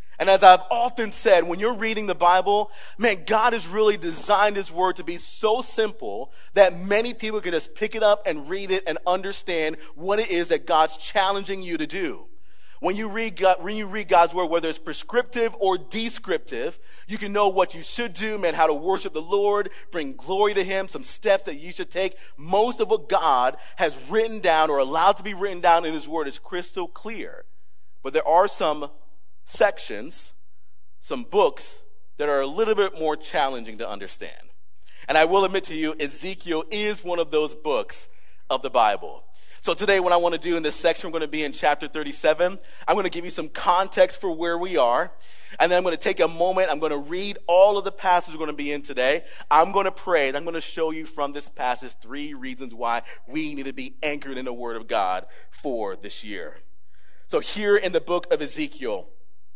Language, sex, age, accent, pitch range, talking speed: English, male, 30-49, American, 155-210 Hz, 215 wpm